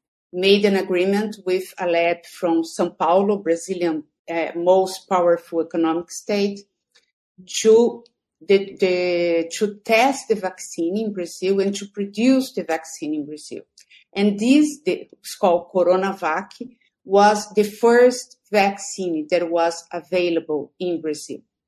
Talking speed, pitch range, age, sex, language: 125 wpm, 175-215 Hz, 50-69, female, English